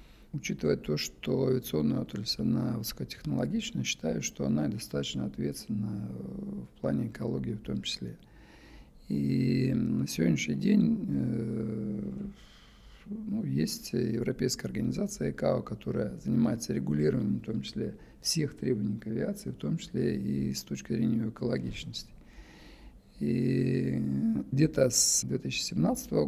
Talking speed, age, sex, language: 115 wpm, 50-69, male, Russian